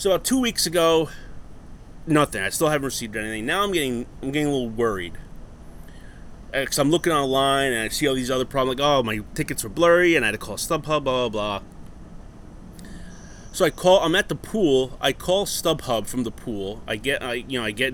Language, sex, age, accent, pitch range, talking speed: English, male, 30-49, American, 110-145 Hz, 215 wpm